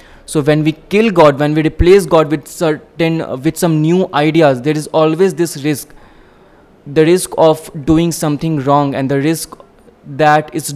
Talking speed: 180 wpm